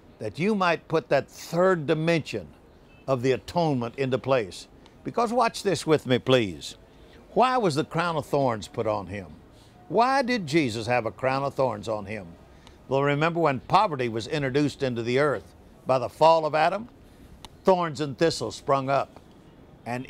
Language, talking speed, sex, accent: English, 170 wpm, male, American